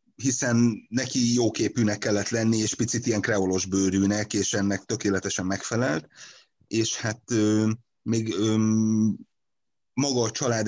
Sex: male